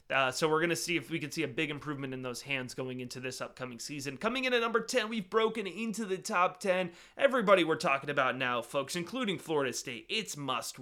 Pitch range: 145-185 Hz